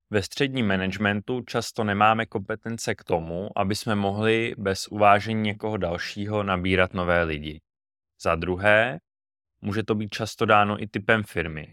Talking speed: 145 wpm